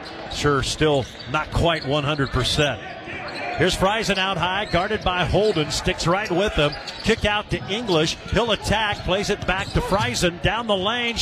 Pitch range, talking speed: 155-195 Hz, 160 wpm